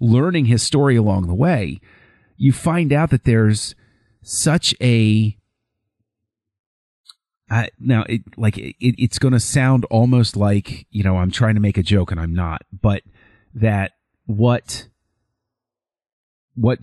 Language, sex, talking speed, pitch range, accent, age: English, male, 140 wpm, 100-120 Hz, American, 40-59